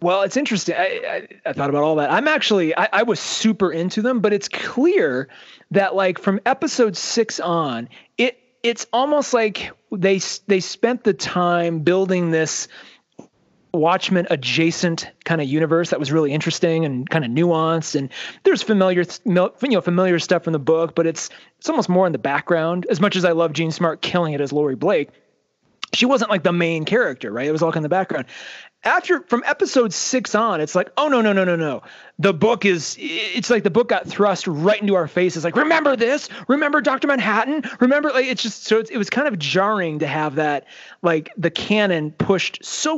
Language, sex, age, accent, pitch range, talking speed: English, male, 30-49, American, 160-225 Hz, 200 wpm